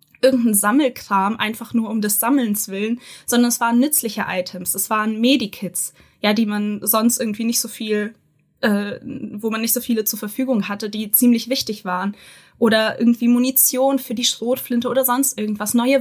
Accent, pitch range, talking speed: German, 205-245 Hz, 175 wpm